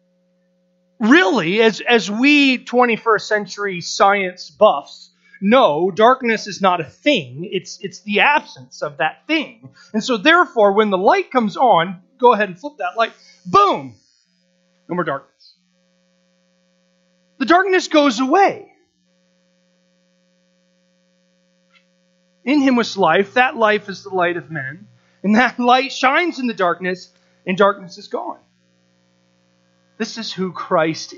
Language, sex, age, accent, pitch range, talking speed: English, male, 30-49, American, 145-230 Hz, 135 wpm